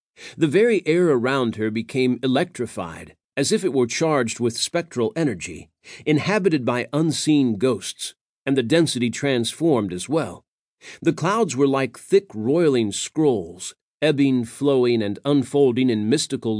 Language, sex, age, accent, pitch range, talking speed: English, male, 40-59, American, 115-150 Hz, 135 wpm